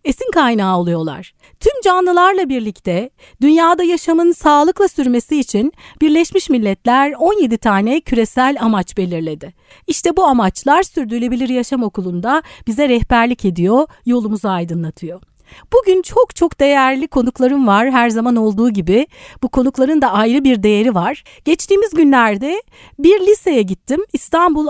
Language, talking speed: Turkish, 125 wpm